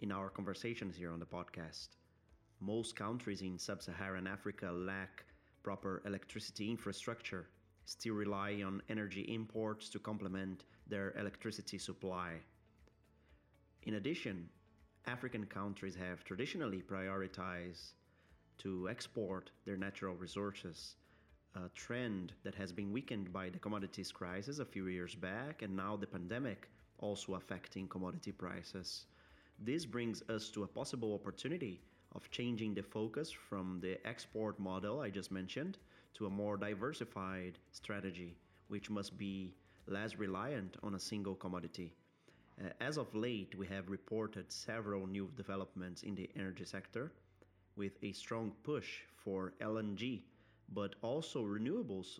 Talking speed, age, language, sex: 130 wpm, 30-49, English, male